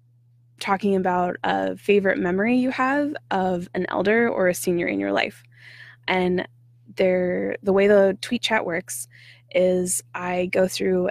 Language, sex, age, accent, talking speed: English, female, 20-39, American, 145 wpm